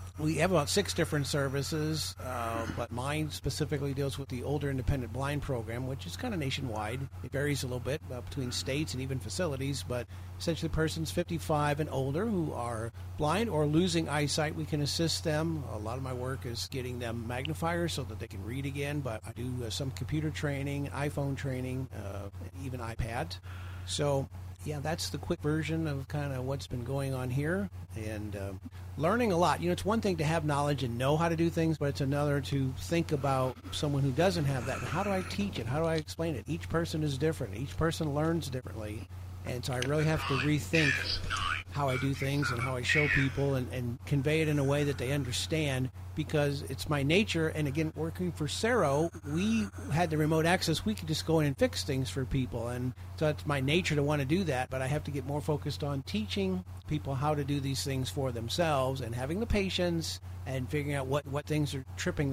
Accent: American